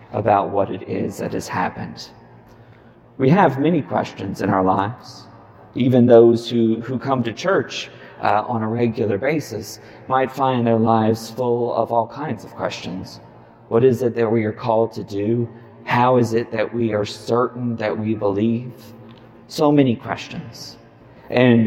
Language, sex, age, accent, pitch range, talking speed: English, male, 40-59, American, 110-130 Hz, 165 wpm